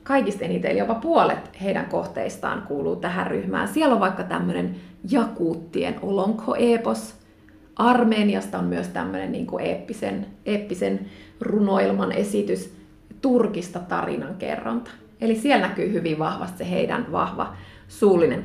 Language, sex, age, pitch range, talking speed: Finnish, female, 30-49, 150-220 Hz, 125 wpm